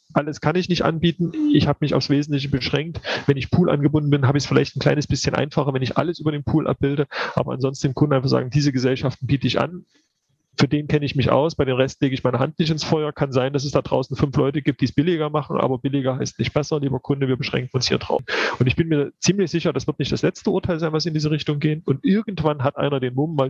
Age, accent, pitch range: 30-49, German, 135-160 Hz